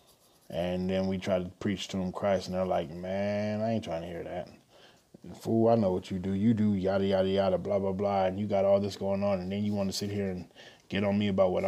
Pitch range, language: 95-105 Hz, English